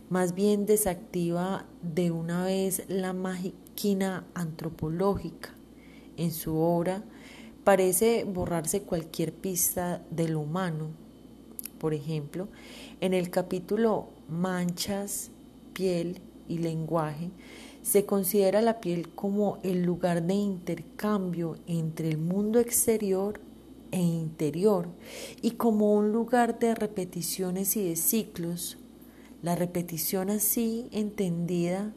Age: 30-49